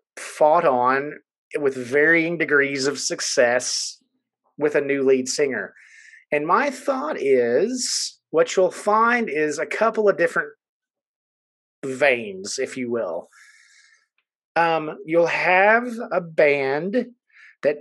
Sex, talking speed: male, 115 wpm